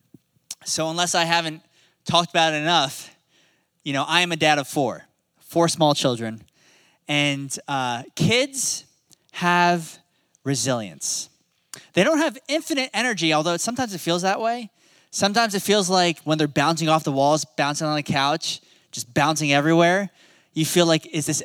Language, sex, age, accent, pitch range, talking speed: English, male, 20-39, American, 150-195 Hz, 160 wpm